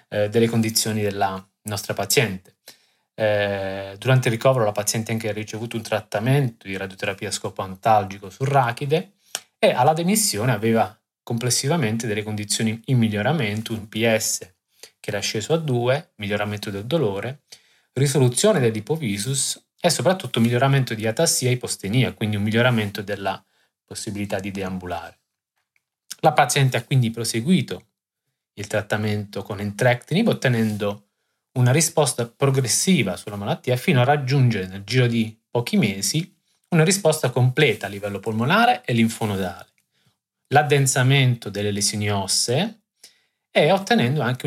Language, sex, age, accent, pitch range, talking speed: Italian, male, 20-39, native, 105-135 Hz, 130 wpm